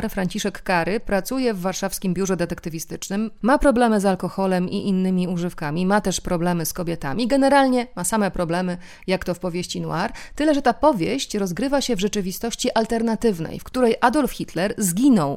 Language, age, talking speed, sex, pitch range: Polish, 30-49, 165 wpm, female, 180-225 Hz